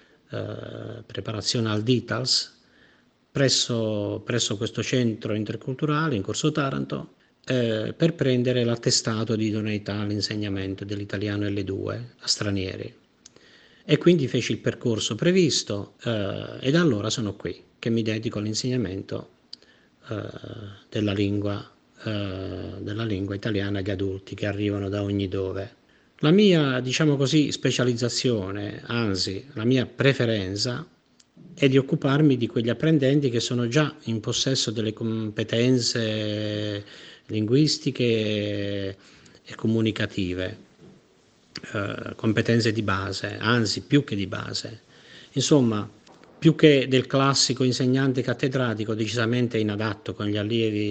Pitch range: 105-130 Hz